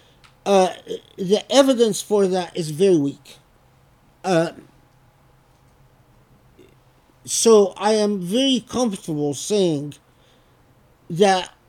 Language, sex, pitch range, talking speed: English, male, 135-210 Hz, 80 wpm